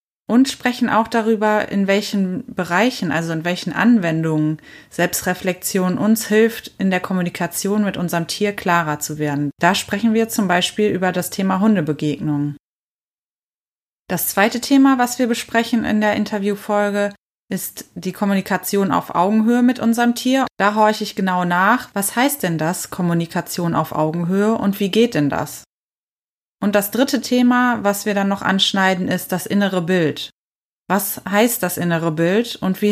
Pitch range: 175-220 Hz